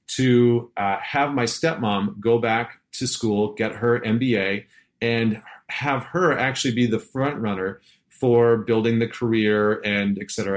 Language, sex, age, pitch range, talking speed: English, male, 40-59, 105-125 Hz, 155 wpm